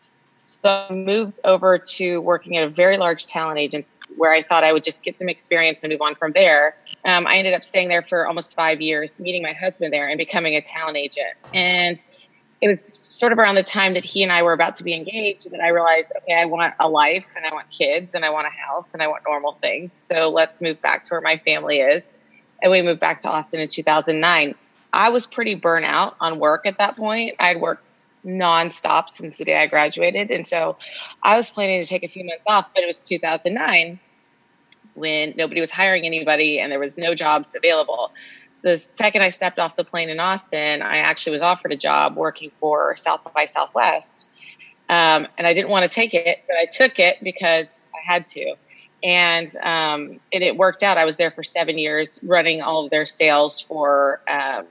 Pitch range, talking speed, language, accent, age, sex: 160-185 Hz, 220 wpm, English, American, 20-39, female